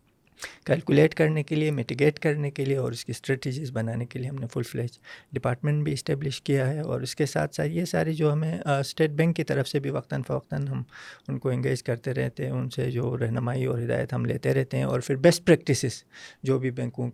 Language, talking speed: Urdu, 230 wpm